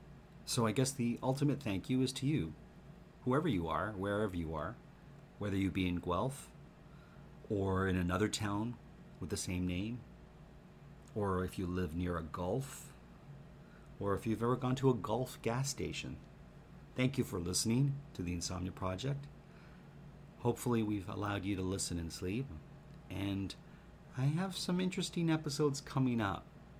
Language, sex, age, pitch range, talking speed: English, male, 40-59, 90-120 Hz, 155 wpm